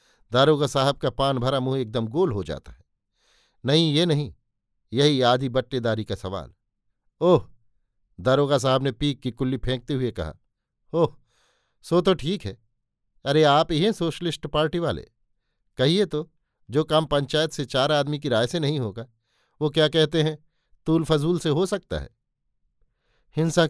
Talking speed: 160 wpm